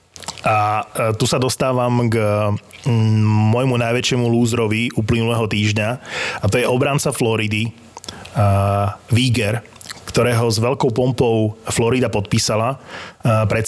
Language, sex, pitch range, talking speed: Slovak, male, 110-130 Hz, 100 wpm